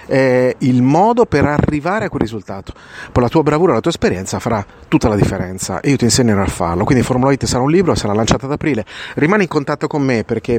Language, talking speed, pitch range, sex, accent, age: Italian, 230 wpm, 105-125 Hz, male, native, 30-49